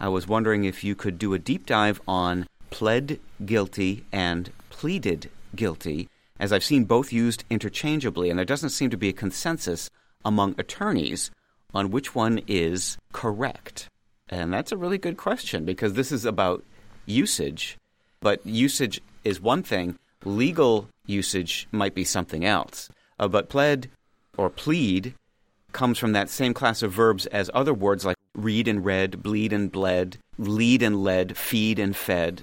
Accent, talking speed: American, 160 wpm